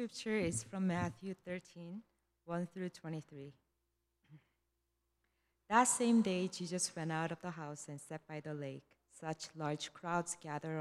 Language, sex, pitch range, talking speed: English, female, 150-185 Hz, 145 wpm